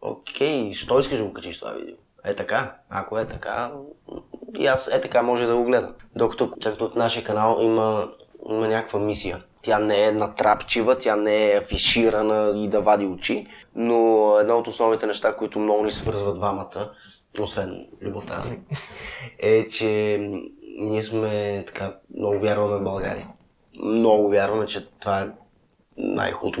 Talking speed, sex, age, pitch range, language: 155 wpm, male, 20-39, 100-110 Hz, Bulgarian